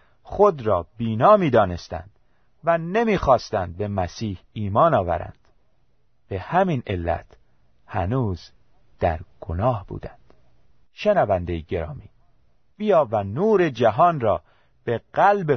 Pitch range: 95-160 Hz